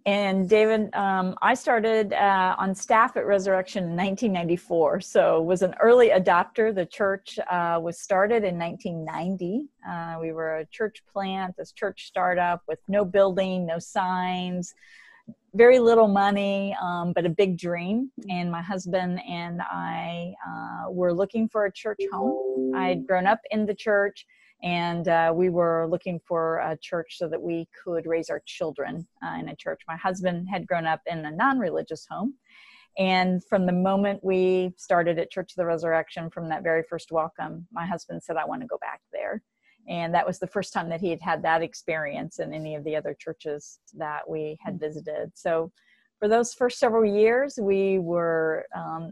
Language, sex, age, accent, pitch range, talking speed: English, female, 40-59, American, 165-200 Hz, 180 wpm